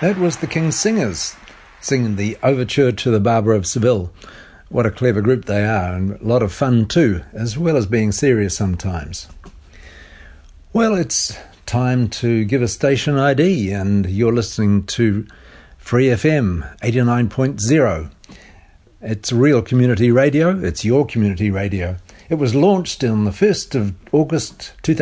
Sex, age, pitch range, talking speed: male, 50-69, 100-130 Hz, 150 wpm